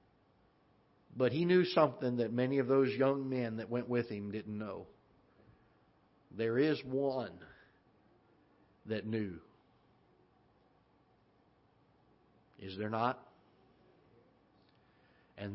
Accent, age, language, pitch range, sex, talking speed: American, 50-69, English, 110-160 Hz, male, 95 wpm